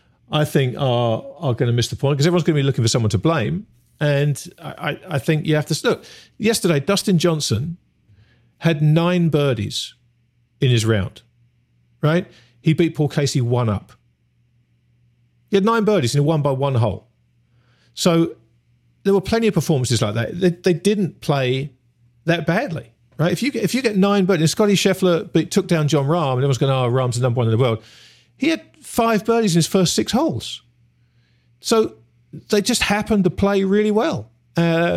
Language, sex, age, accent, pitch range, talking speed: English, male, 50-69, British, 120-170 Hz, 190 wpm